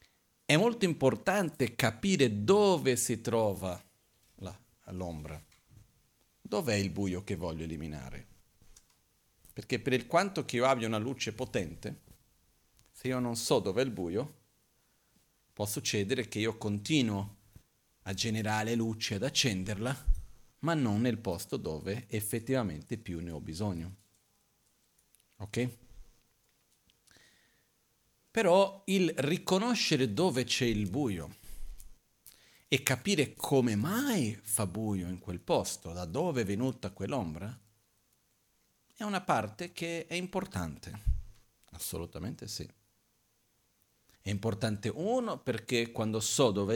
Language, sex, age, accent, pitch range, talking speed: Italian, male, 50-69, native, 100-130 Hz, 115 wpm